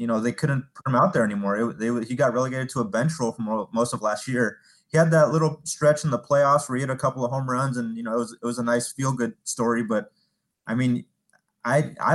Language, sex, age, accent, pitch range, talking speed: English, male, 30-49, American, 115-135 Hz, 270 wpm